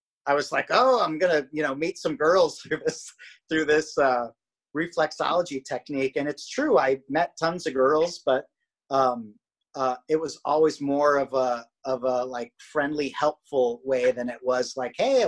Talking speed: 190 wpm